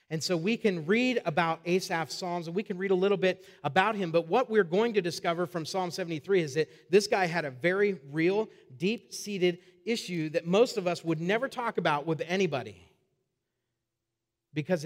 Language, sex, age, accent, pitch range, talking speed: English, male, 40-59, American, 140-185 Hz, 190 wpm